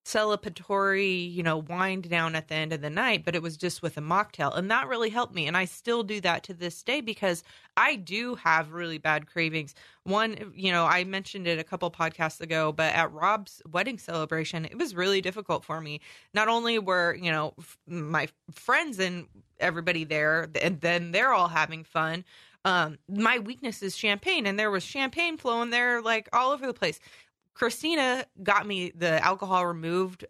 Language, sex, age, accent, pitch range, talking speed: English, female, 20-39, American, 165-210 Hz, 190 wpm